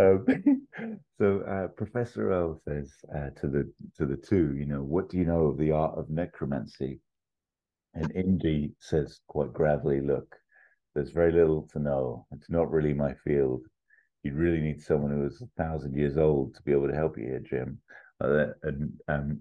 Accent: British